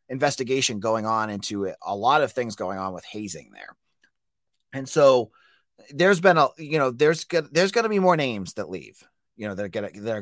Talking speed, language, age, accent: 215 wpm, English, 30-49, American